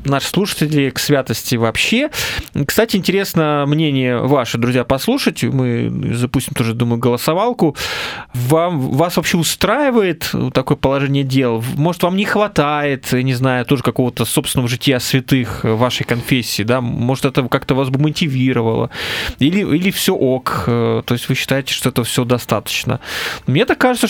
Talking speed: 145 wpm